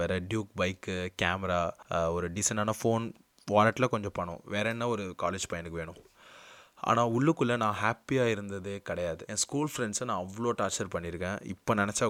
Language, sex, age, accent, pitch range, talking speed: Tamil, male, 20-39, native, 90-110 Hz, 150 wpm